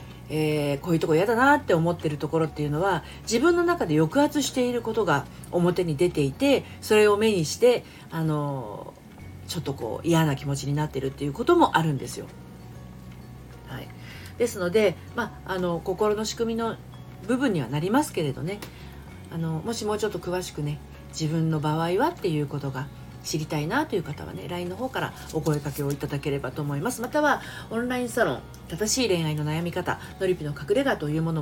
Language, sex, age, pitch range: Japanese, female, 40-59, 145-205 Hz